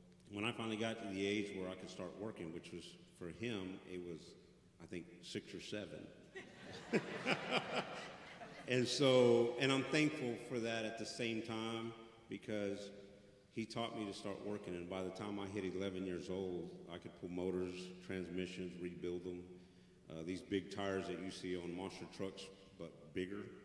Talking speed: 175 wpm